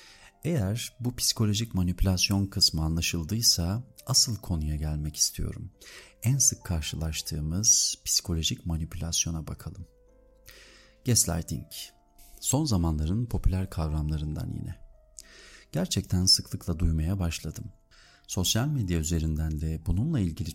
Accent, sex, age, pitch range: native, male, 40-59, 80-110 Hz